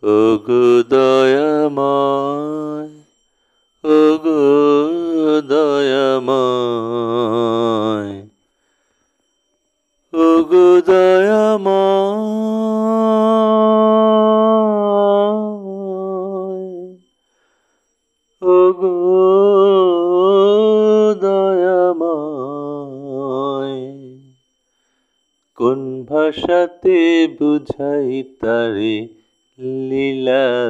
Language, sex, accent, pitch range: Bengali, male, native, 130-210 Hz